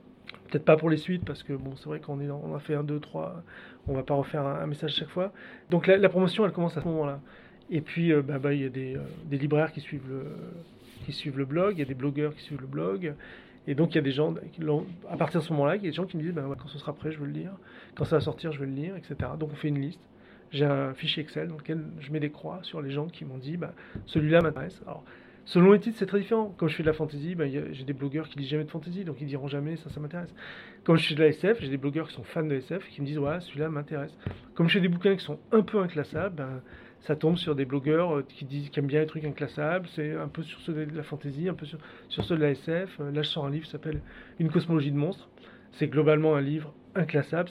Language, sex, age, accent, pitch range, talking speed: French, male, 30-49, French, 145-165 Hz, 305 wpm